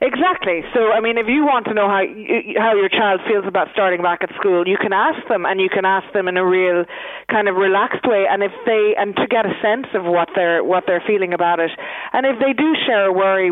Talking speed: 255 wpm